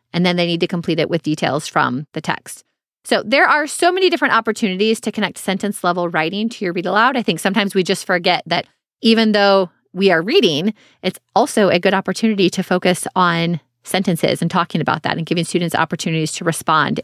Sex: female